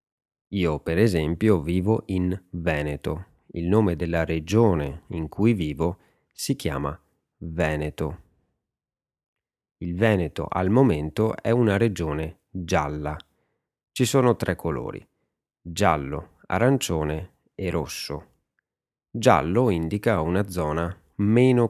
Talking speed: 100 wpm